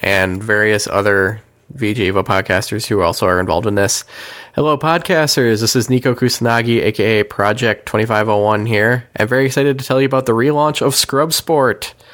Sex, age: male, 20-39